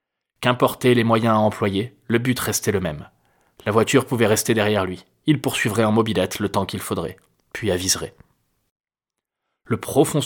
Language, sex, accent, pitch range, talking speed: French, male, French, 100-120 Hz, 165 wpm